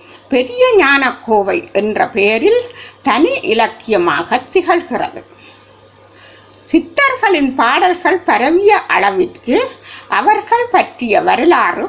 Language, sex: Tamil, female